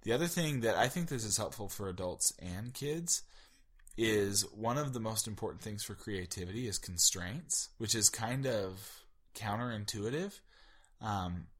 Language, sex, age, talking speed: English, male, 10-29, 155 wpm